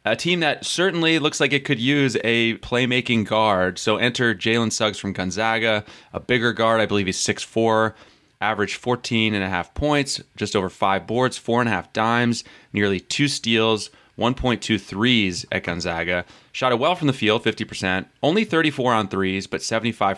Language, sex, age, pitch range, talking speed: English, male, 30-49, 95-120 Hz, 170 wpm